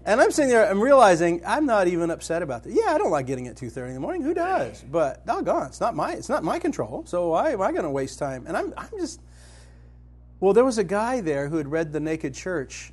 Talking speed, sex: 265 wpm, male